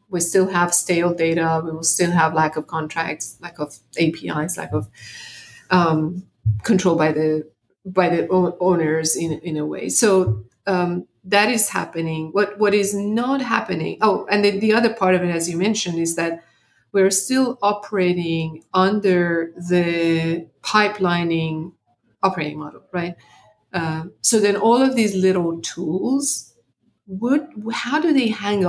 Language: English